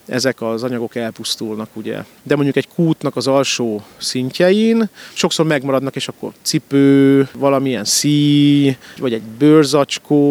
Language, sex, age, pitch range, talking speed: Hungarian, male, 30-49, 130-165 Hz, 130 wpm